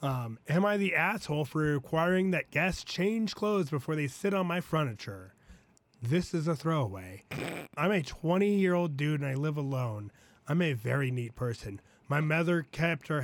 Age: 30-49